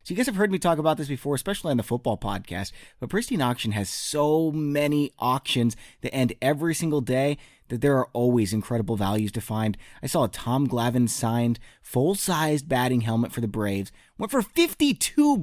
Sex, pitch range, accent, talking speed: male, 115-150 Hz, American, 195 wpm